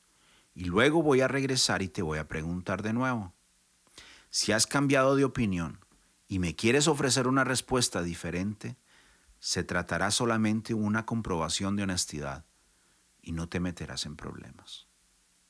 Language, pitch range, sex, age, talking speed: Spanish, 85-120 Hz, male, 40-59, 145 wpm